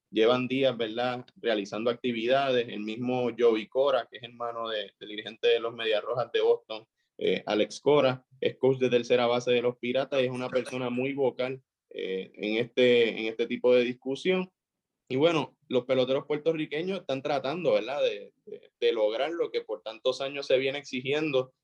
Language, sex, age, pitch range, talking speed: English, male, 20-39, 120-160 Hz, 185 wpm